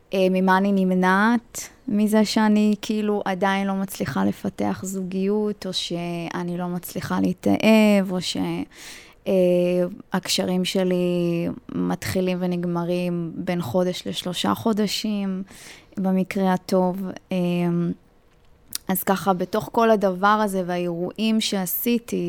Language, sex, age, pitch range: Hebrew, female, 20-39, 175-195 Hz